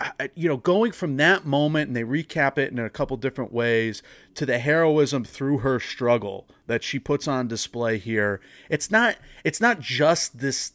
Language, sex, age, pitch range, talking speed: English, male, 30-49, 120-150 Hz, 185 wpm